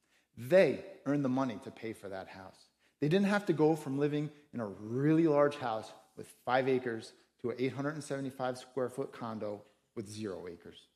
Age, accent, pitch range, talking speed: 30-49, American, 110-140 Hz, 170 wpm